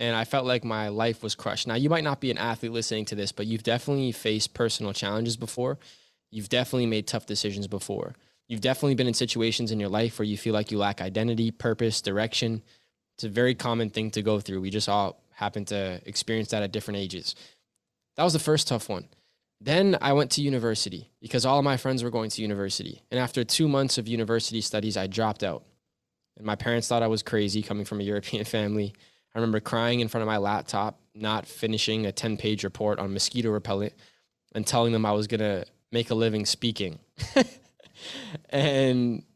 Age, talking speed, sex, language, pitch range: 10-29, 205 wpm, male, English, 105-120 Hz